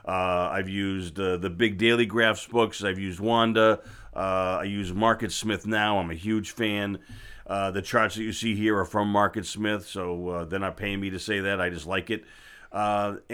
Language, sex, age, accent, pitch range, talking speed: English, male, 40-59, American, 105-125 Hz, 210 wpm